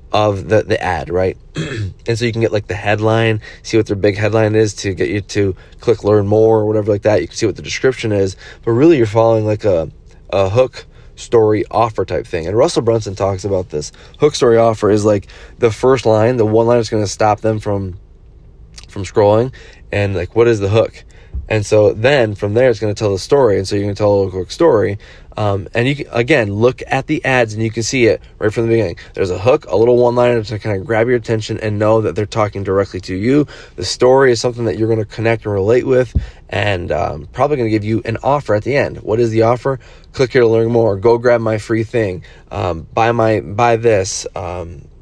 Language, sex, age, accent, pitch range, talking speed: English, male, 20-39, American, 100-115 Hz, 245 wpm